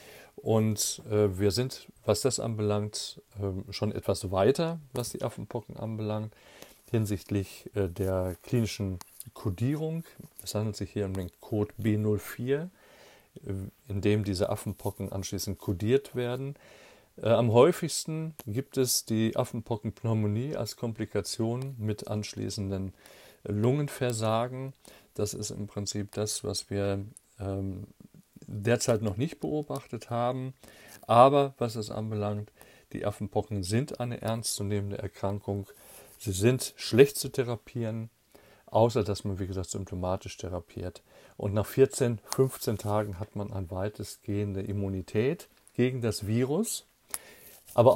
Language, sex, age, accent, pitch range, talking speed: German, male, 40-59, German, 100-120 Hz, 125 wpm